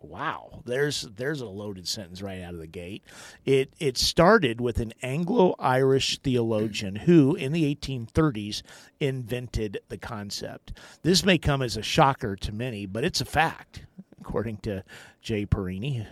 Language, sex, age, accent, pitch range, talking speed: English, male, 50-69, American, 110-140 Hz, 155 wpm